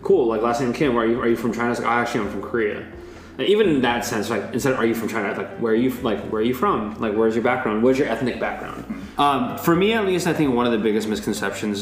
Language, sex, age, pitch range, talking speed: English, male, 20-39, 105-120 Hz, 305 wpm